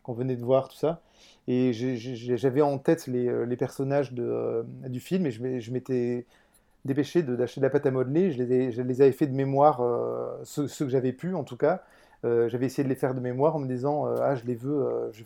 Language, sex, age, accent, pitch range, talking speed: French, male, 30-49, French, 125-140 Hz, 250 wpm